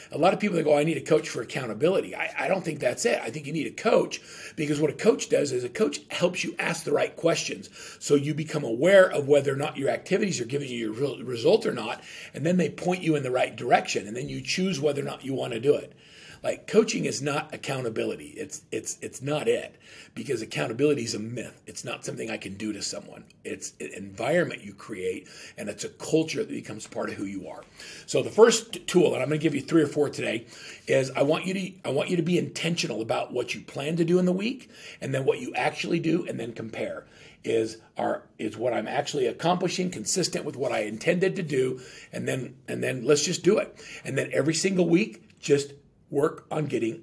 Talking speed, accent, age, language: 240 wpm, American, 40-59, English